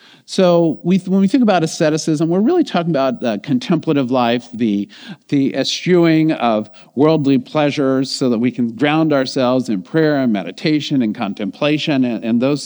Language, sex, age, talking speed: English, male, 50-69, 170 wpm